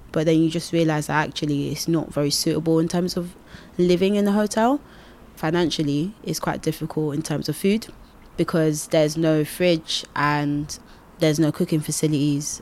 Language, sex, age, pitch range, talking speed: English, female, 20-39, 150-170 Hz, 165 wpm